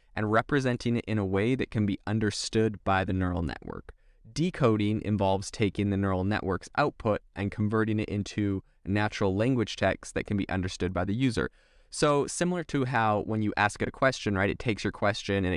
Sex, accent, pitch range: male, American, 95-115 Hz